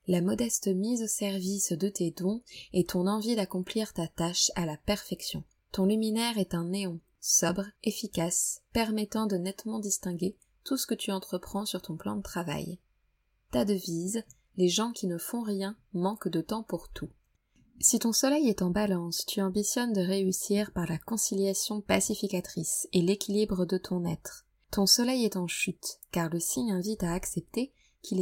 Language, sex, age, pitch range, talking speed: French, female, 20-39, 175-210 Hz, 175 wpm